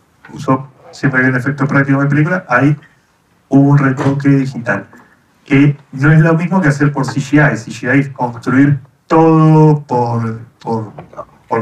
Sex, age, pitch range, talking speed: male, 30-49, 125-150 Hz, 145 wpm